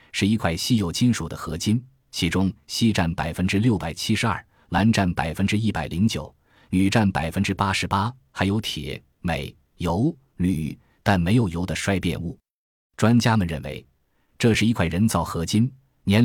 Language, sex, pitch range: Chinese, male, 85-115 Hz